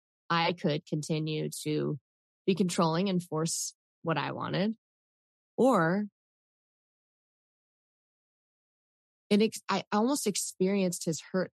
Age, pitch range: 20-39, 150-175 Hz